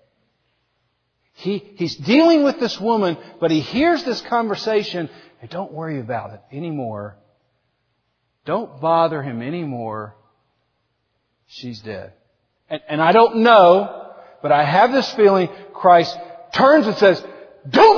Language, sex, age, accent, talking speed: English, male, 50-69, American, 130 wpm